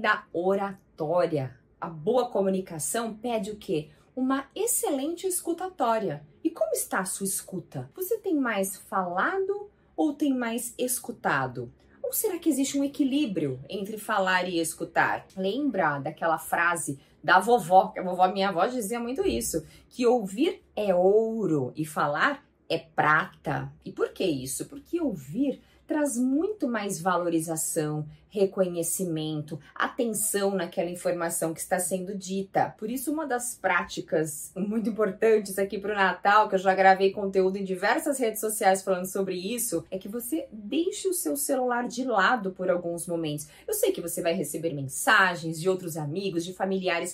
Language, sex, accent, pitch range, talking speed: Portuguese, female, Brazilian, 180-280 Hz, 155 wpm